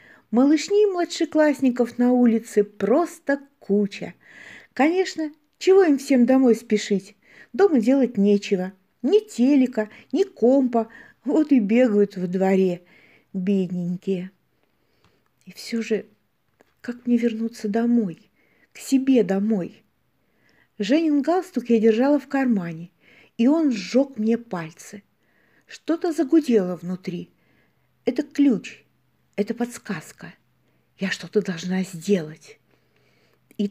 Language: Russian